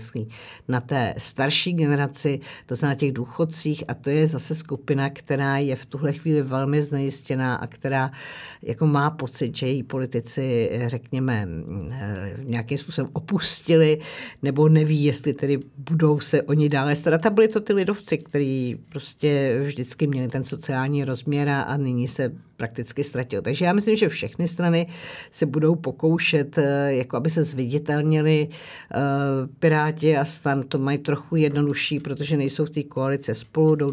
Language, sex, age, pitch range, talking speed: Czech, female, 50-69, 130-150 Hz, 150 wpm